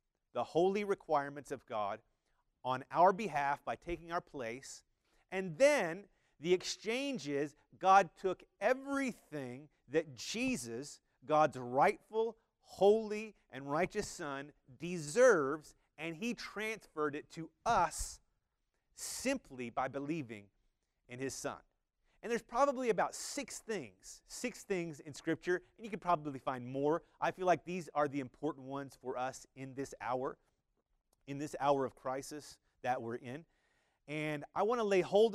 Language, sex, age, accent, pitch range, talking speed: English, male, 30-49, American, 135-195 Hz, 145 wpm